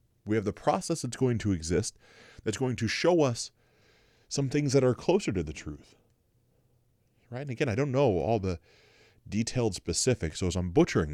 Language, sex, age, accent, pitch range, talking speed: English, male, 30-49, American, 95-120 Hz, 190 wpm